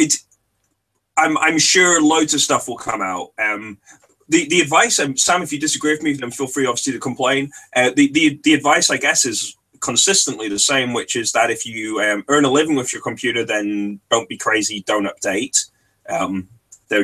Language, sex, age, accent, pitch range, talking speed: English, male, 20-39, British, 110-155 Hz, 205 wpm